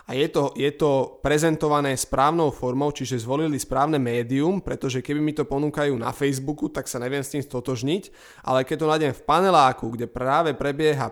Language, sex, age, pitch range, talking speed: Slovak, male, 20-39, 125-145 Hz, 190 wpm